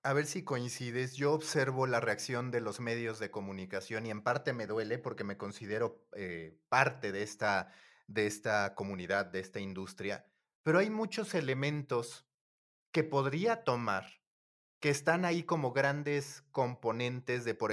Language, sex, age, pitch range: Spanish, male, 30-49, 125-175 Hz